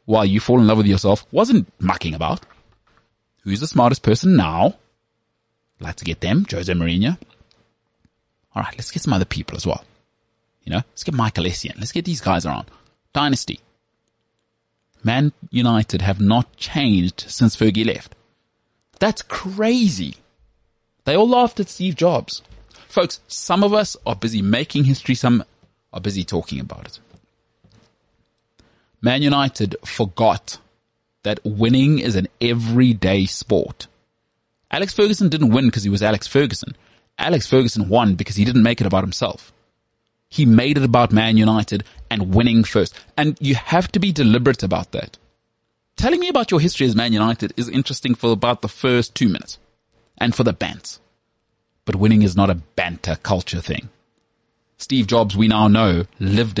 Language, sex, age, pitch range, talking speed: English, male, 30-49, 105-125 Hz, 160 wpm